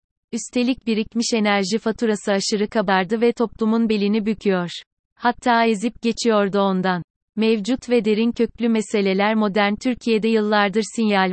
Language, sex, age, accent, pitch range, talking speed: Turkish, female, 30-49, native, 195-230 Hz, 120 wpm